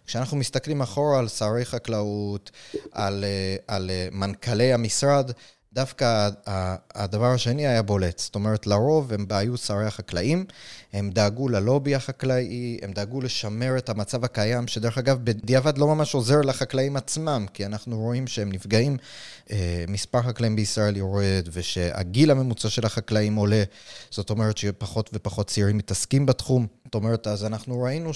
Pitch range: 105-130 Hz